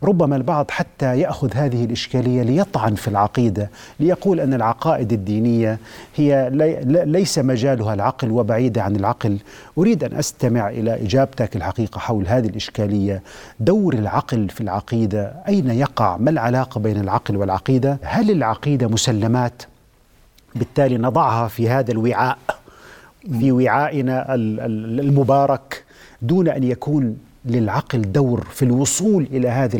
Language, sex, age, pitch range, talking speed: Arabic, male, 40-59, 110-140 Hz, 120 wpm